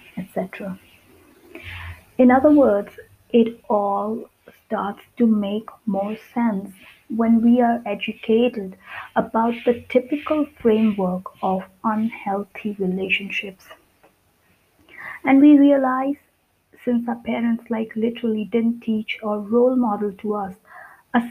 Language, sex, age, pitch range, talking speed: English, female, 30-49, 195-245 Hz, 105 wpm